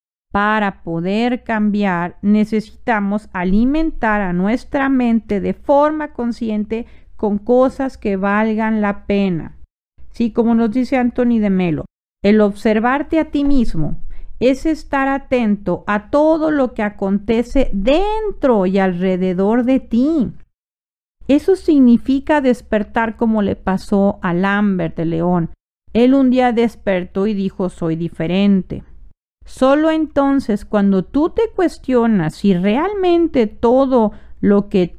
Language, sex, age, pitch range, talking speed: Spanish, female, 40-59, 195-255 Hz, 120 wpm